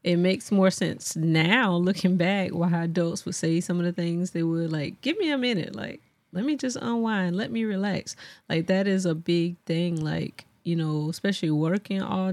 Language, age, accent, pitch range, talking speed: English, 30-49, American, 155-175 Hz, 205 wpm